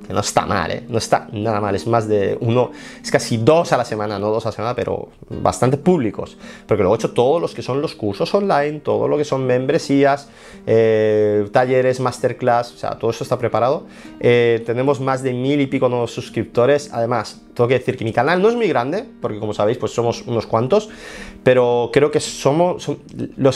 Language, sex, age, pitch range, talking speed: Spanish, male, 30-49, 110-140 Hz, 215 wpm